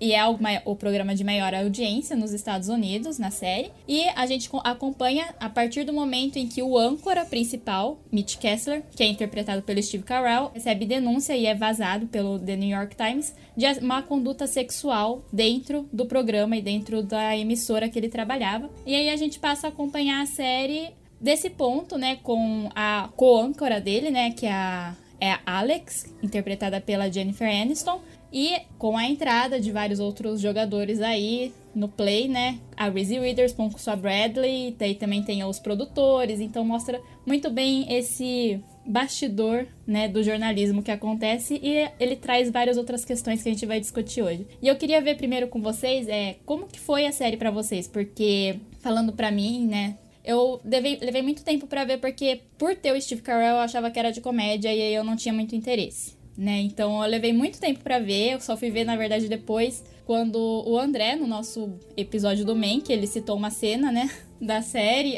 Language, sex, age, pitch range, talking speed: Portuguese, female, 10-29, 215-260 Hz, 190 wpm